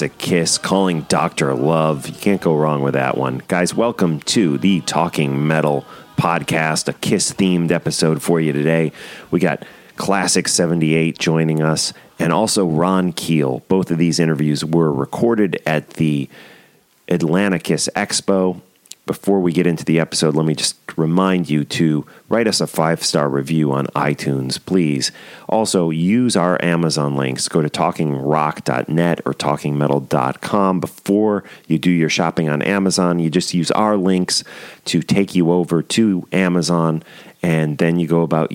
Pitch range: 75-90 Hz